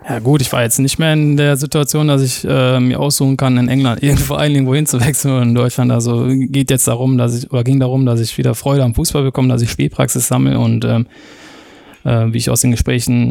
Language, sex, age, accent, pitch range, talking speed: German, male, 20-39, German, 115-130 Hz, 245 wpm